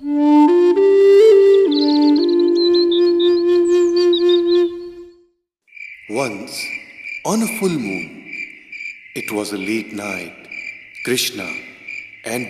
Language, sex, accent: Hindi, male, native